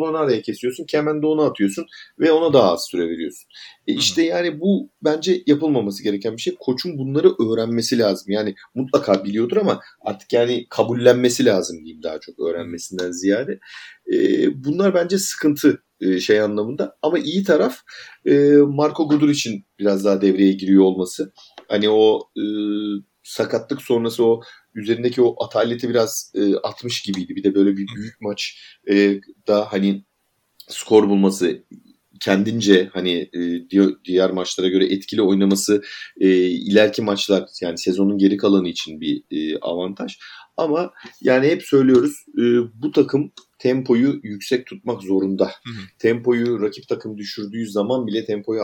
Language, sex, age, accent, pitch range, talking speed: Turkish, male, 40-59, native, 95-140 Hz, 135 wpm